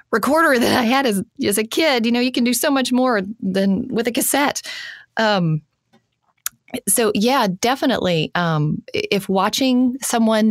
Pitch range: 165-210 Hz